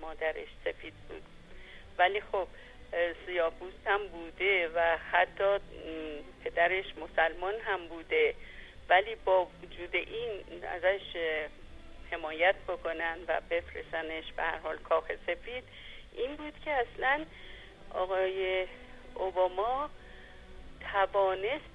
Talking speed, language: 95 wpm, Persian